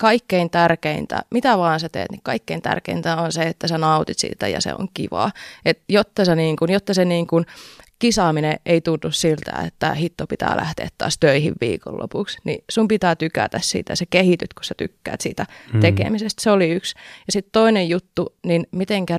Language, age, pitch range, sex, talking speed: Finnish, 20-39, 160-195 Hz, female, 190 wpm